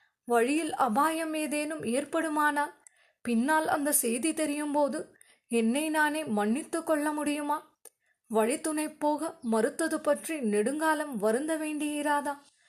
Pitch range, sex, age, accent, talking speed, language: 275-315 Hz, female, 20-39, native, 100 wpm, Tamil